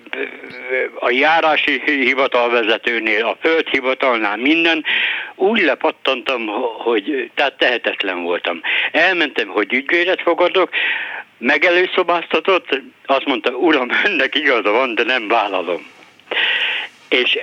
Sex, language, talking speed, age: male, Hungarian, 95 wpm, 60-79